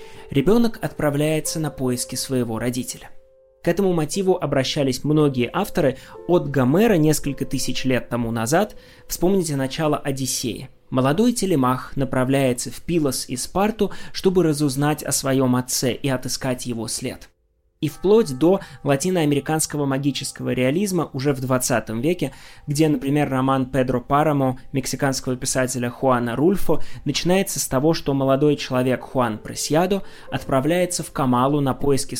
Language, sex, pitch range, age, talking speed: Russian, male, 125-165 Hz, 20-39, 130 wpm